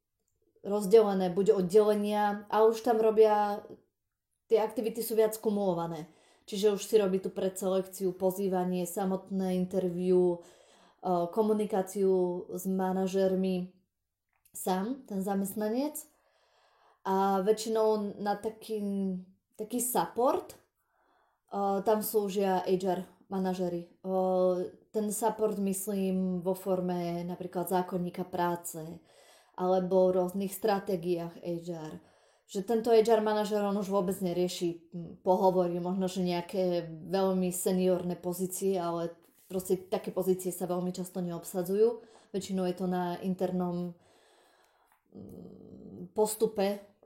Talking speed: 100 wpm